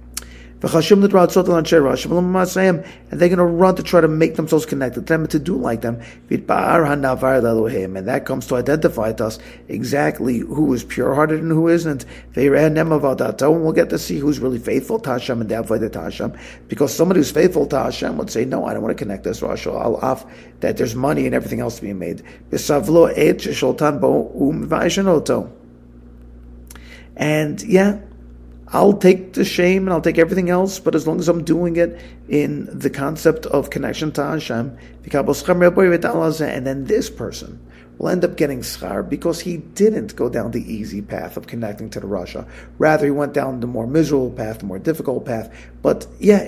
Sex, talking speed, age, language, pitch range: male, 165 wpm, 50-69, English, 105-170 Hz